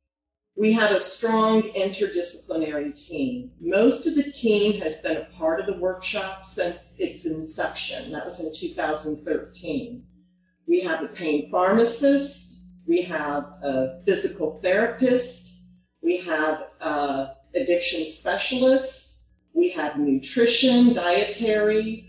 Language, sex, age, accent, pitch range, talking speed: English, female, 40-59, American, 160-225 Hz, 115 wpm